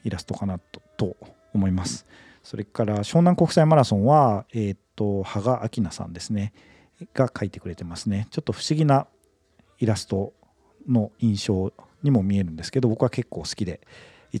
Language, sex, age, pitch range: Japanese, male, 40-59, 95-125 Hz